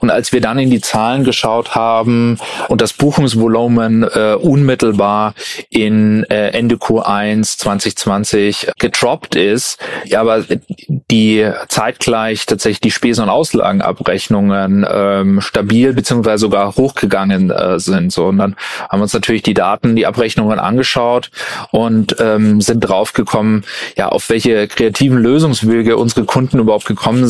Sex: male